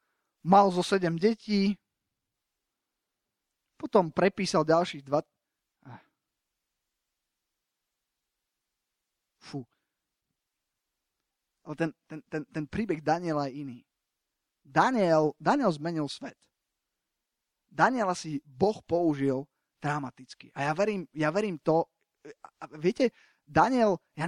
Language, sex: Slovak, male